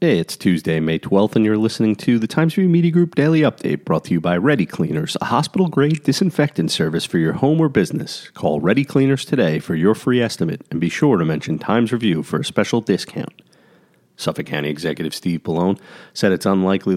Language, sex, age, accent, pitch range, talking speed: English, male, 40-59, American, 85-115 Hz, 210 wpm